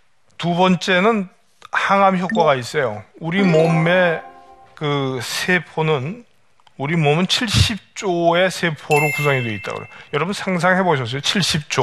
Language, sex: Korean, male